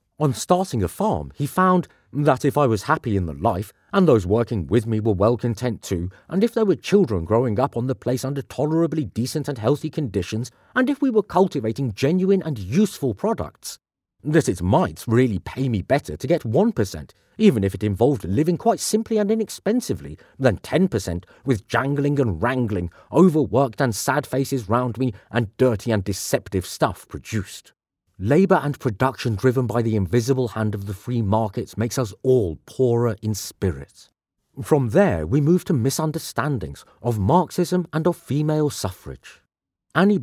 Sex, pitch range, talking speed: male, 105-165 Hz, 175 wpm